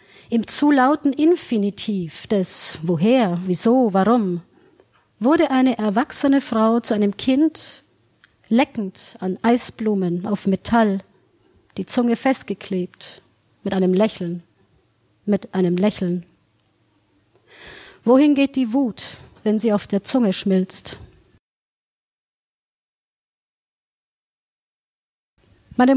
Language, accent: German, German